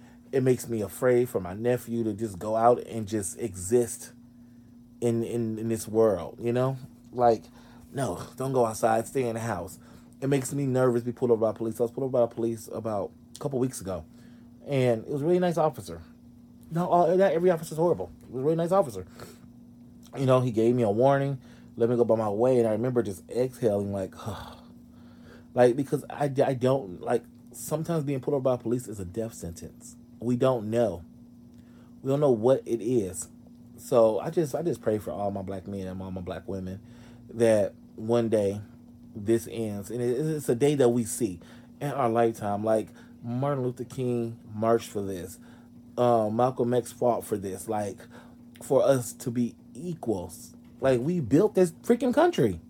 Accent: American